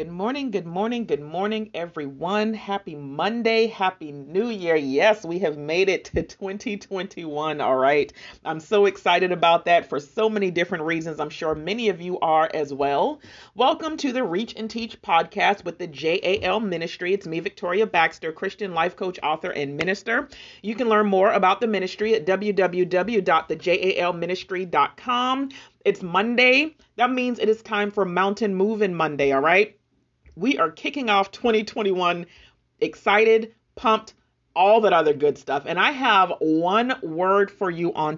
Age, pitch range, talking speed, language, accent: 40-59, 170-220 Hz, 160 wpm, English, American